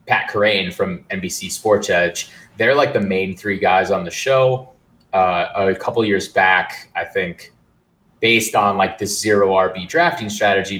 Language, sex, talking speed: English, male, 165 wpm